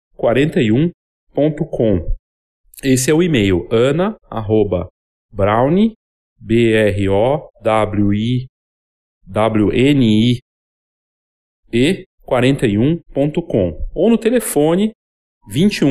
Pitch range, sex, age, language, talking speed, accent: 110-160 Hz, male, 40-59, Portuguese, 115 wpm, Brazilian